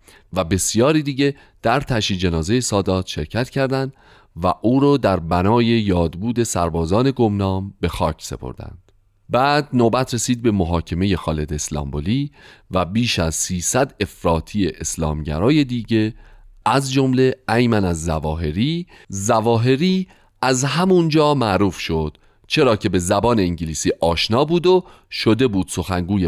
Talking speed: 125 wpm